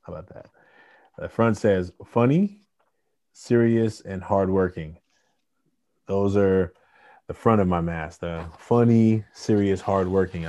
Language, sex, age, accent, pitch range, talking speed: English, male, 20-39, American, 85-100 Hz, 120 wpm